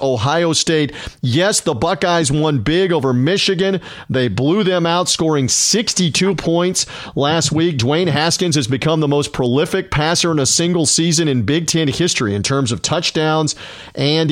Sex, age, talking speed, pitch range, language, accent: male, 40-59, 165 wpm, 145-185 Hz, English, American